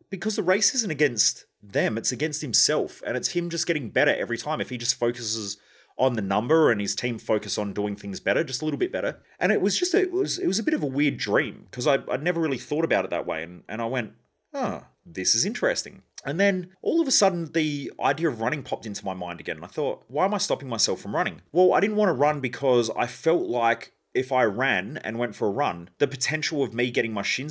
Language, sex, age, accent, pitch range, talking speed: English, male, 30-49, Australian, 115-185 Hz, 260 wpm